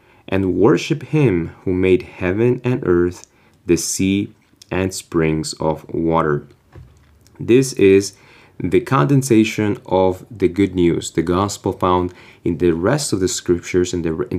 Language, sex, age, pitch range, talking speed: English, male, 20-39, 85-110 Hz, 140 wpm